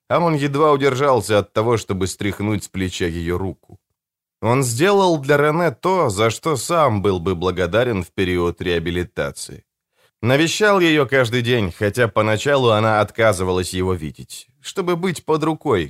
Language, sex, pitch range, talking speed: English, male, 100-145 Hz, 145 wpm